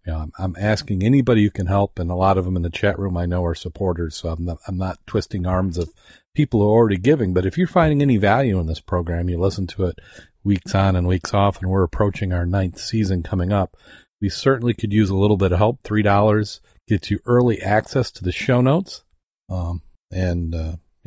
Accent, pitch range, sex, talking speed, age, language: American, 90-105 Hz, male, 230 wpm, 40-59, English